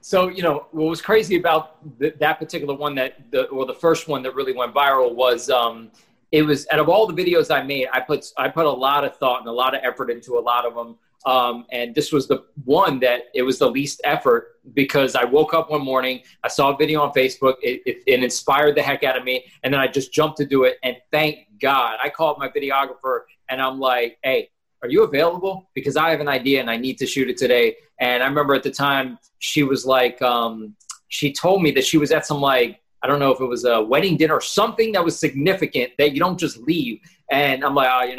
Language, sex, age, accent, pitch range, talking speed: English, male, 30-49, American, 130-160 Hz, 250 wpm